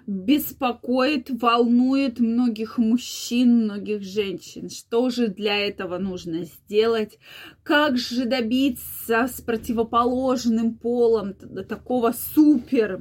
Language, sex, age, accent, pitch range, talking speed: Russian, female, 20-39, native, 220-270 Hz, 90 wpm